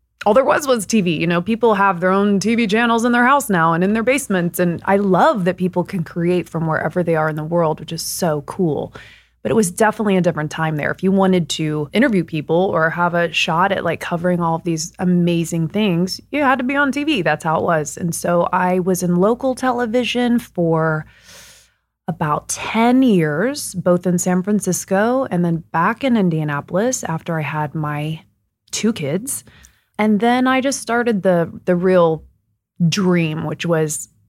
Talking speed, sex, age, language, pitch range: 195 wpm, female, 20-39, English, 170-225 Hz